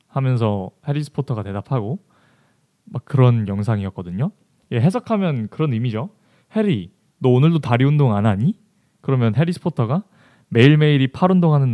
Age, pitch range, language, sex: 20-39, 115-160 Hz, Korean, male